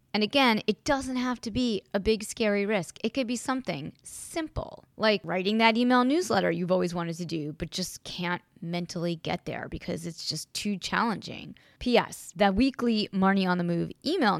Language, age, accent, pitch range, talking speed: English, 20-39, American, 175-215 Hz, 190 wpm